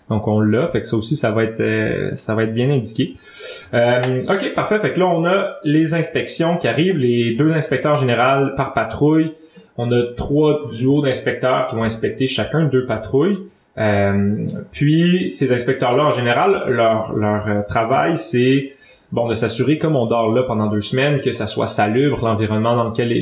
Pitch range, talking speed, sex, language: 115-150 Hz, 185 wpm, male, French